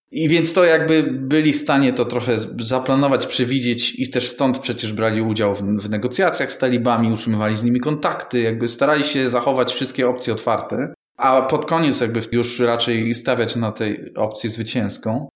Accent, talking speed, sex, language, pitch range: native, 170 wpm, male, Polish, 120-155 Hz